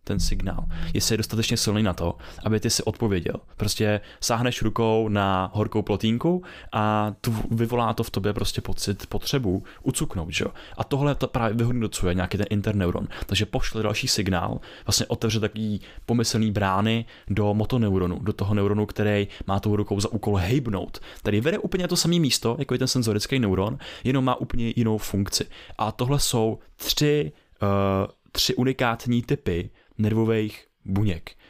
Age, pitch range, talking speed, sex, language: 20-39, 100-120 Hz, 160 wpm, male, Czech